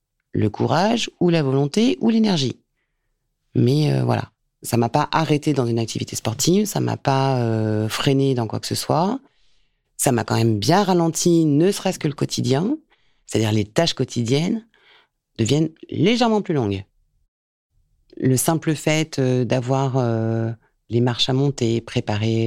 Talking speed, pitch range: 160 wpm, 115-150 Hz